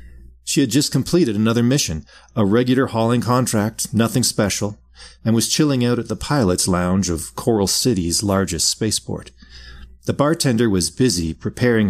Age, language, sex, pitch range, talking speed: 40-59, English, male, 80-115 Hz, 150 wpm